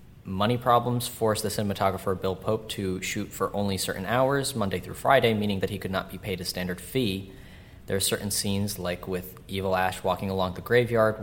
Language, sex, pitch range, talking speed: English, male, 95-115 Hz, 205 wpm